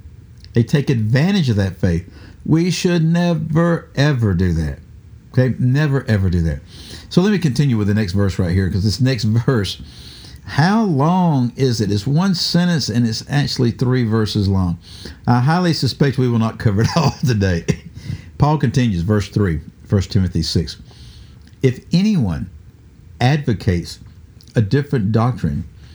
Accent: American